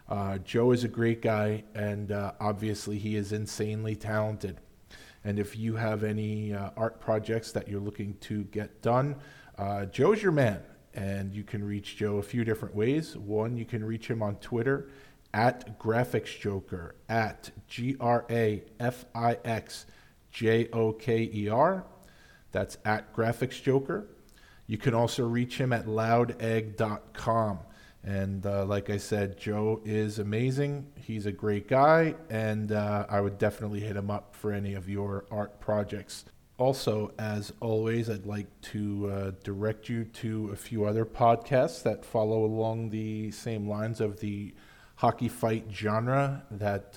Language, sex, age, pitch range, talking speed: English, male, 40-59, 105-115 Hz, 145 wpm